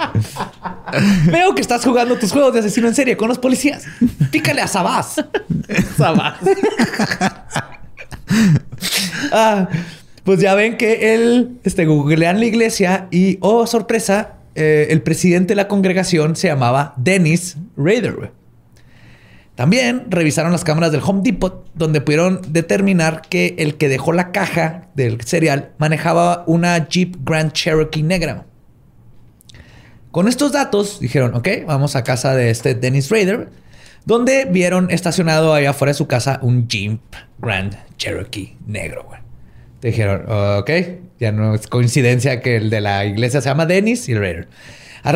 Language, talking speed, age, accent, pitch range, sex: Spanish, 140 wpm, 30-49, Mexican, 140-200 Hz, male